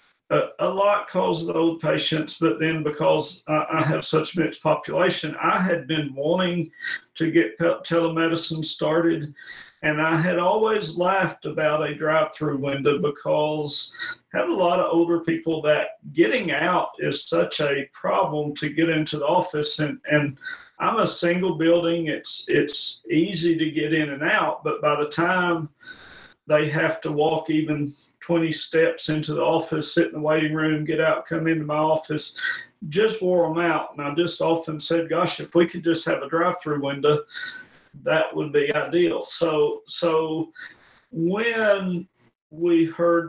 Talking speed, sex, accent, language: 160 wpm, male, American, English